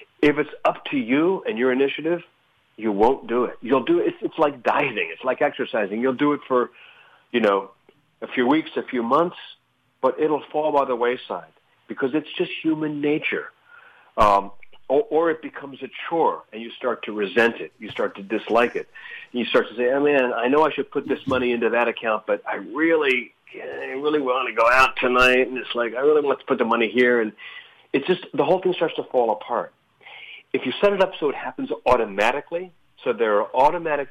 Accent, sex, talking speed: American, male, 220 wpm